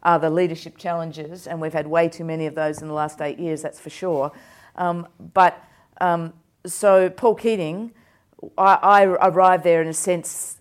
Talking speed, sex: 185 wpm, female